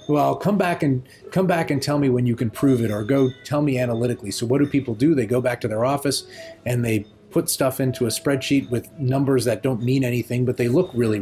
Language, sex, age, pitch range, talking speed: English, male, 30-49, 115-140 Hz, 250 wpm